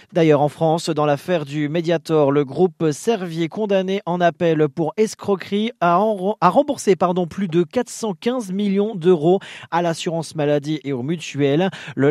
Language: French